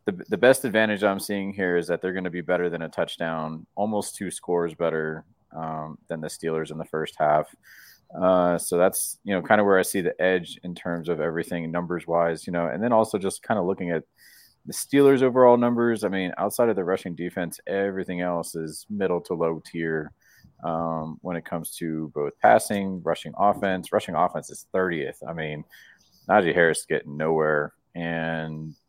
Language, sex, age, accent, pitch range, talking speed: English, male, 30-49, American, 80-95 Hz, 195 wpm